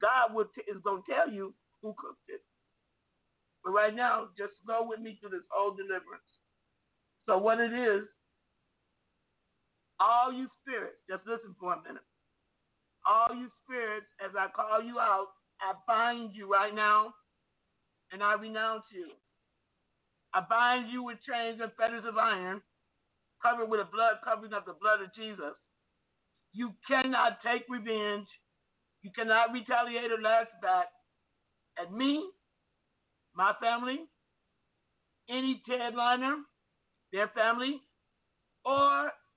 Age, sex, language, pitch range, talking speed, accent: 50-69, male, English, 215-255 Hz, 135 wpm, American